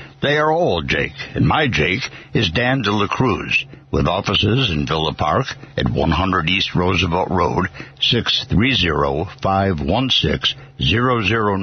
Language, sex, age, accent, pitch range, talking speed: English, male, 60-79, American, 95-125 Hz, 125 wpm